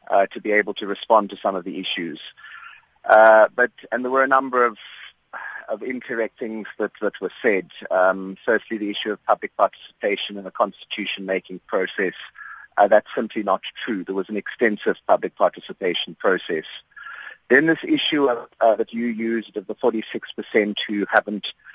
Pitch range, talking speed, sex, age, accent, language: 100-115 Hz, 170 wpm, male, 30-49, British, English